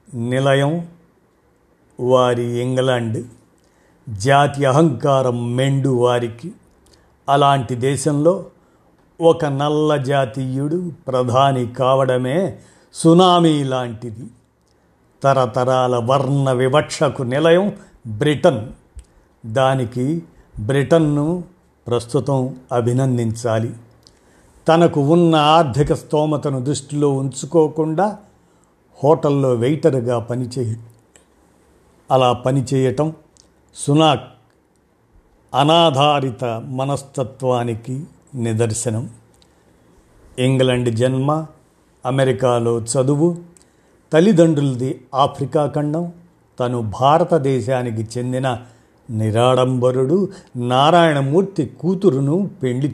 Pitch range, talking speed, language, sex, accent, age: 125-155 Hz, 60 wpm, Telugu, male, native, 50-69